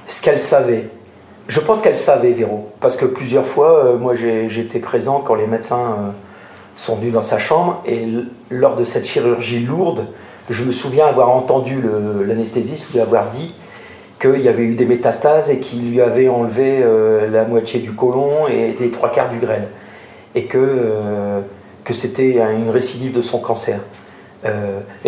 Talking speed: 180 wpm